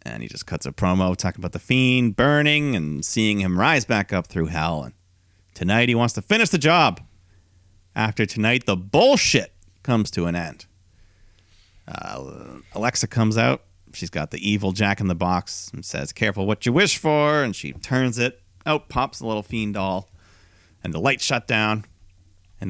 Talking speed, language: 185 wpm, English